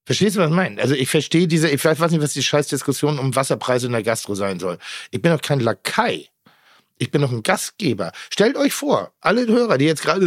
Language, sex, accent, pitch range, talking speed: German, male, German, 140-185 Hz, 235 wpm